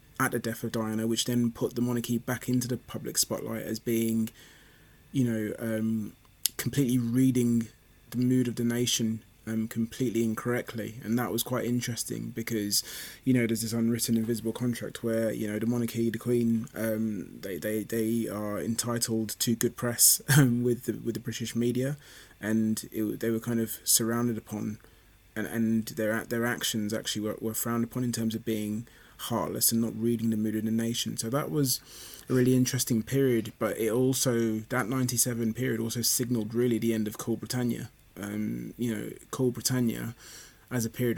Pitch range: 110-120 Hz